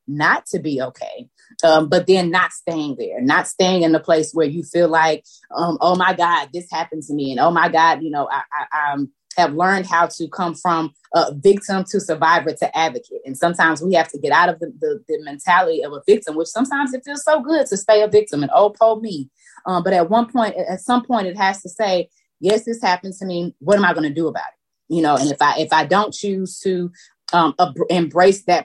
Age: 20-39